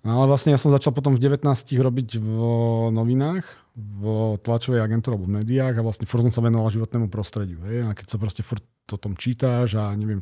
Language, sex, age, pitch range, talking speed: Slovak, male, 40-59, 100-115 Hz, 225 wpm